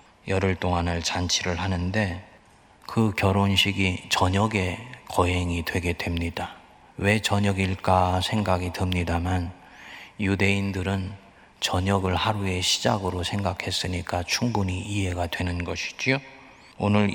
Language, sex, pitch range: Korean, male, 90-100 Hz